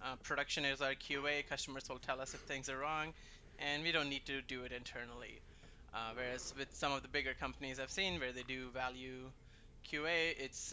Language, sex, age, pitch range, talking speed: English, male, 20-39, 125-145 Hz, 205 wpm